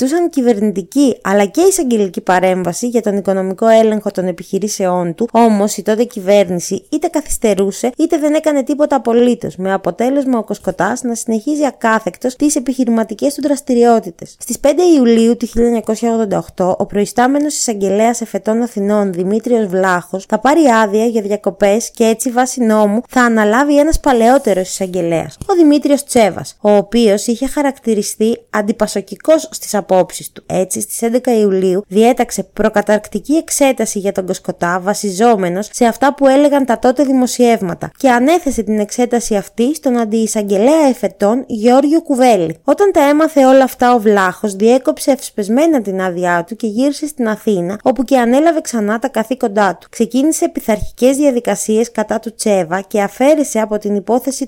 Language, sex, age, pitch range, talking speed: Greek, female, 20-39, 205-260 Hz, 95 wpm